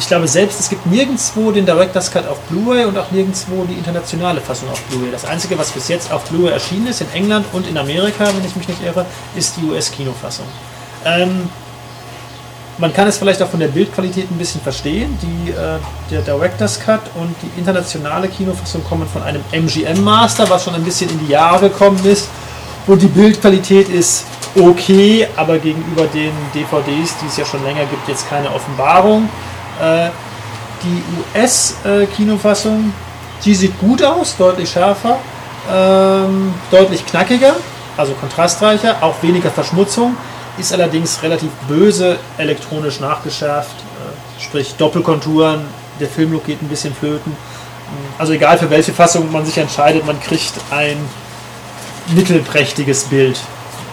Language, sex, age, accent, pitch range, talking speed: German, male, 30-49, German, 140-190 Hz, 150 wpm